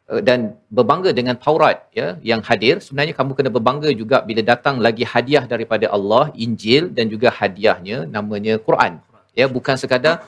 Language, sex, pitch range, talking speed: Malayalam, male, 115-145 Hz, 160 wpm